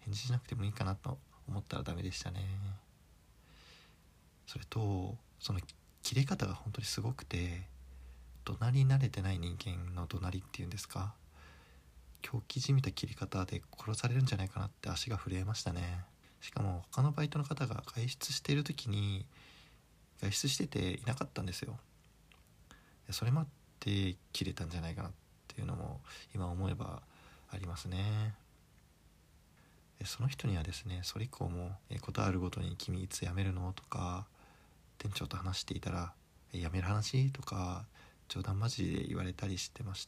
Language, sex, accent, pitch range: Japanese, male, native, 90-125 Hz